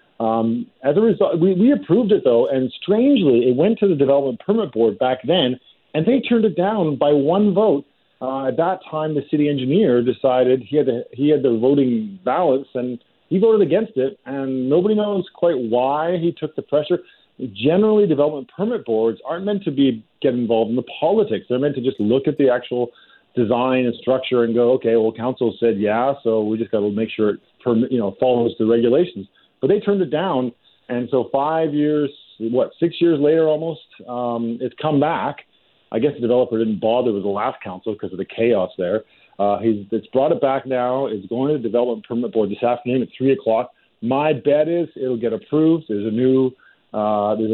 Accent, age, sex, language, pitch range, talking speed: American, 40-59, male, English, 115-150 Hz, 210 wpm